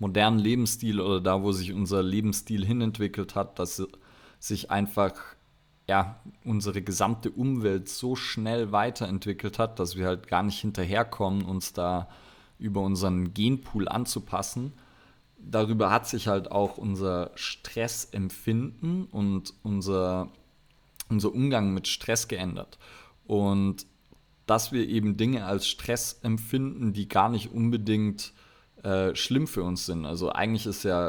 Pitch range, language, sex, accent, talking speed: 95-115 Hz, German, male, German, 125 wpm